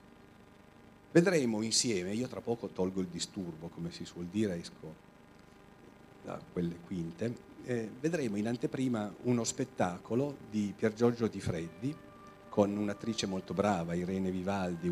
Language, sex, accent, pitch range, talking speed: Italian, male, native, 90-115 Hz, 135 wpm